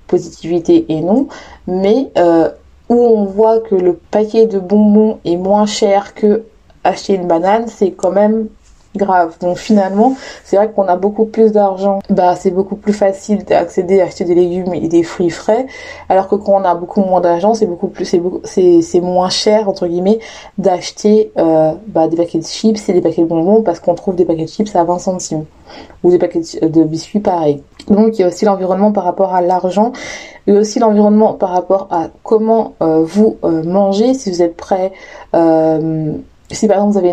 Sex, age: female, 20-39